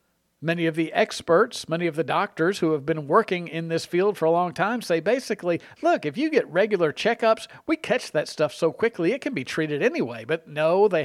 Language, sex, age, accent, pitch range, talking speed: English, male, 50-69, American, 155-200 Hz, 225 wpm